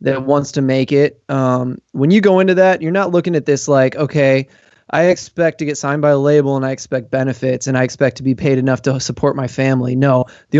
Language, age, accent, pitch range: English, 20-39, American, 135-165 Hz